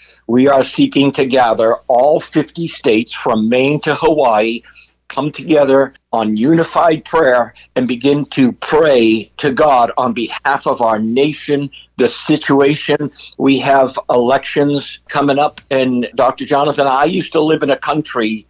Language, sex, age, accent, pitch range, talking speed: English, male, 60-79, American, 125-145 Hz, 145 wpm